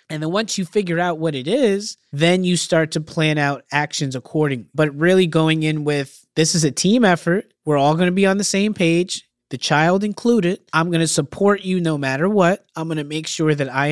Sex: male